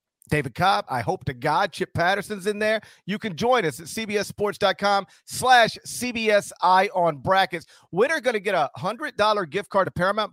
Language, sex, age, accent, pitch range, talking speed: English, male, 40-59, American, 160-205 Hz, 175 wpm